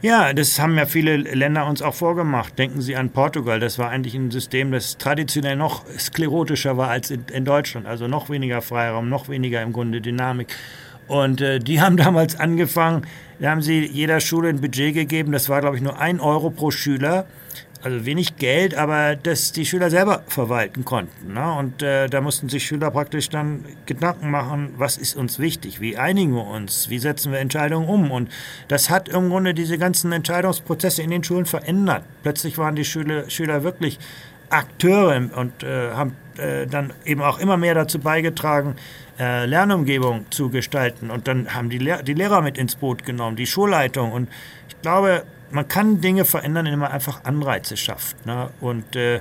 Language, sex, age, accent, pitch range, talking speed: German, male, 50-69, German, 130-160 Hz, 185 wpm